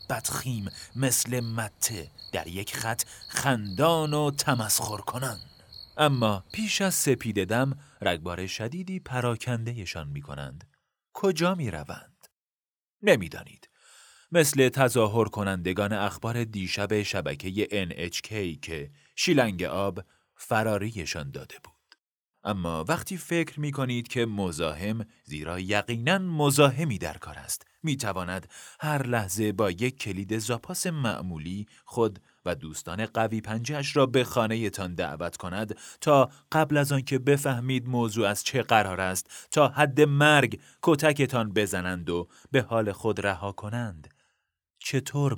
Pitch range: 95-135 Hz